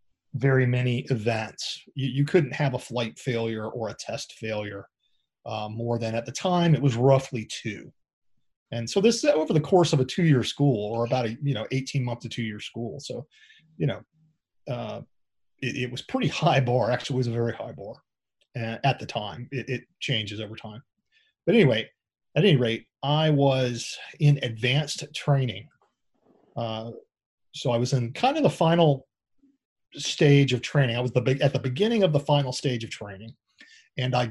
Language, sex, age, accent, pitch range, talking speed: English, male, 30-49, American, 115-145 Hz, 185 wpm